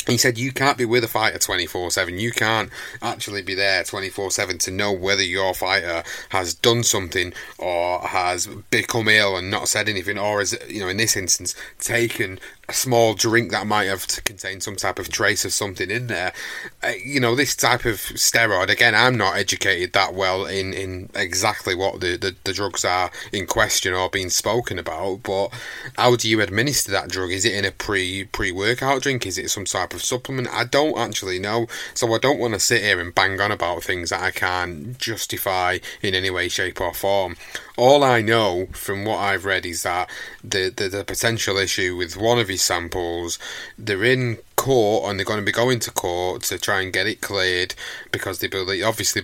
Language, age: English, 30-49